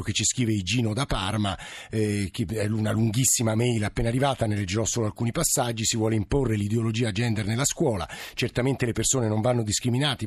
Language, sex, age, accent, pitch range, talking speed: Italian, male, 50-69, native, 110-135 Hz, 185 wpm